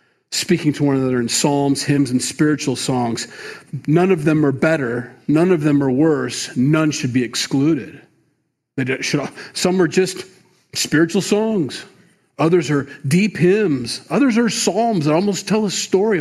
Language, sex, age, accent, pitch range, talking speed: English, male, 40-59, American, 130-165 Hz, 150 wpm